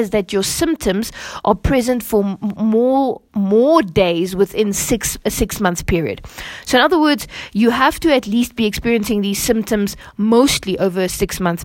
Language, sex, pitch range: English, female, 180-235 Hz